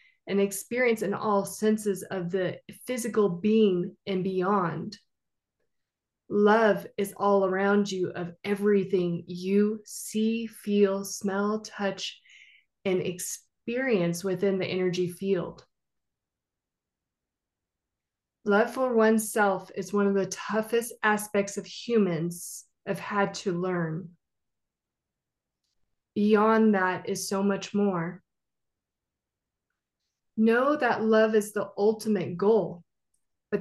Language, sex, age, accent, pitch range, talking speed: English, female, 20-39, American, 185-215 Hz, 105 wpm